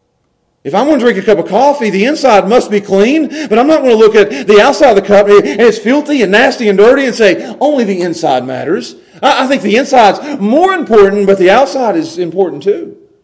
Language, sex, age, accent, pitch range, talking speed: English, male, 40-59, American, 200-270 Hz, 230 wpm